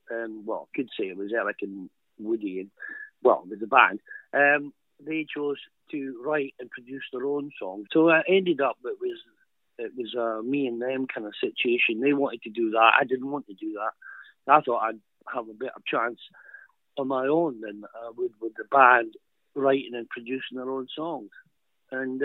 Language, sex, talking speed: English, male, 205 wpm